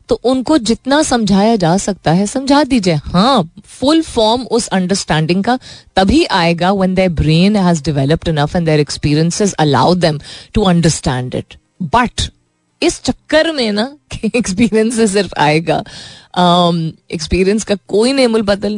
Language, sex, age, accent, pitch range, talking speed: Hindi, female, 30-49, native, 155-220 Hz, 140 wpm